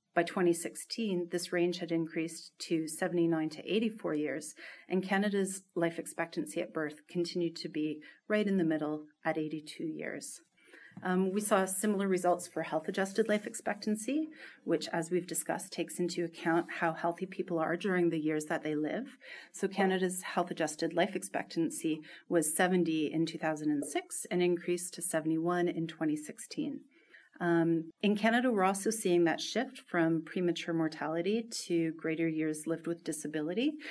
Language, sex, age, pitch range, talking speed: English, female, 40-59, 160-190 Hz, 150 wpm